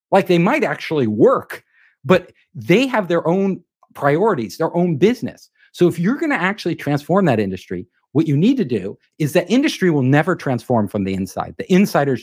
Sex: male